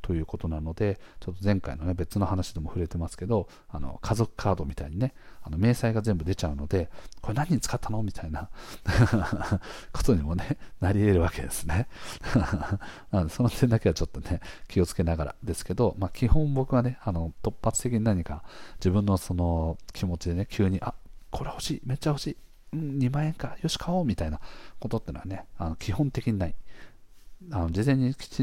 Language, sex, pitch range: Japanese, male, 85-115 Hz